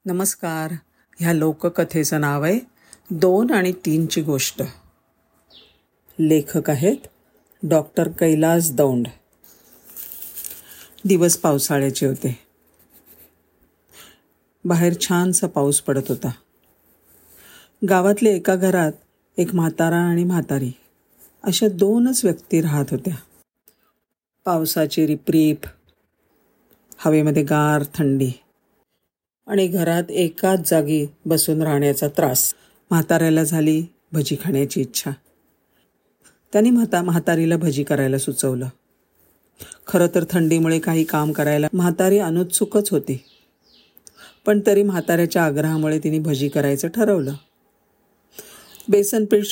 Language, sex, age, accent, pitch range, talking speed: Marathi, female, 50-69, native, 150-190 Hz, 90 wpm